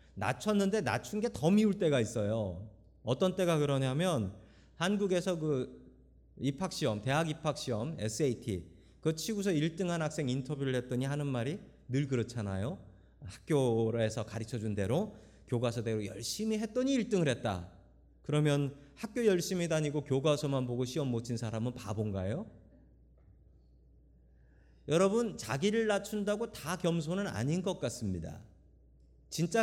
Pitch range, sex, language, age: 105-160 Hz, male, Korean, 40-59